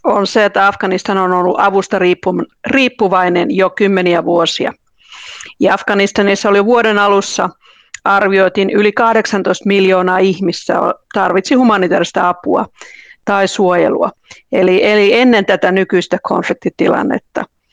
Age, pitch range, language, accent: 50-69, 185-215 Hz, Finnish, native